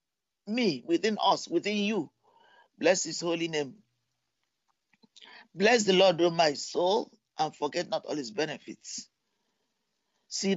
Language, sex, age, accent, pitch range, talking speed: English, male, 50-69, Nigerian, 180-245 Hz, 120 wpm